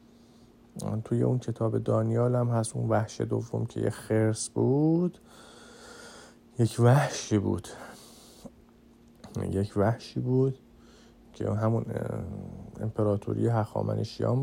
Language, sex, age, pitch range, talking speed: Persian, male, 50-69, 110-120 Hz, 95 wpm